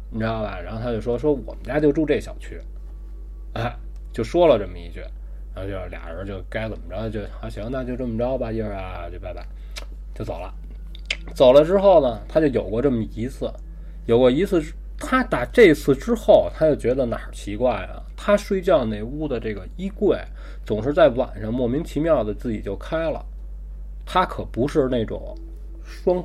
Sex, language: male, Chinese